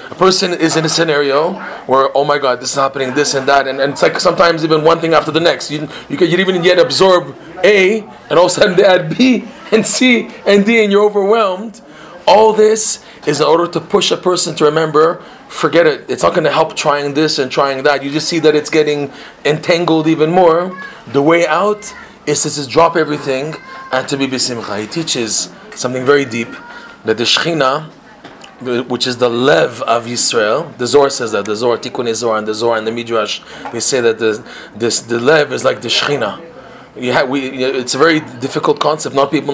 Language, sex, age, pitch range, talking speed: English, male, 30-49, 130-175 Hz, 210 wpm